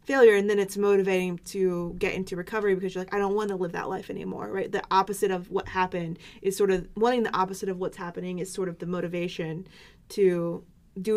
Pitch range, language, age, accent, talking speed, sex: 180-205 Hz, English, 20-39, American, 225 wpm, female